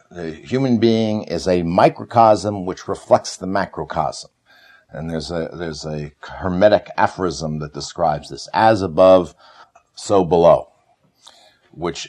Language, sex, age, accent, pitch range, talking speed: English, male, 60-79, American, 85-115 Hz, 125 wpm